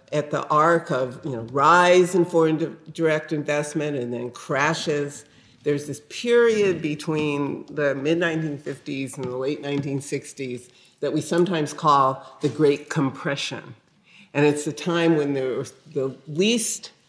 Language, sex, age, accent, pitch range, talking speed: English, female, 50-69, American, 140-170 Hz, 135 wpm